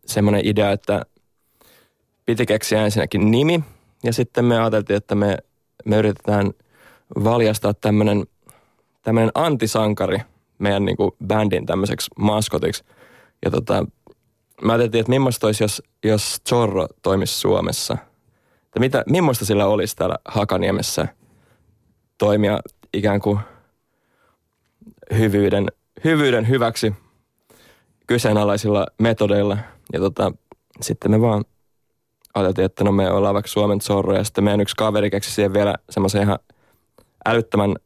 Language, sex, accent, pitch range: Finnish, male, native, 100-115 Hz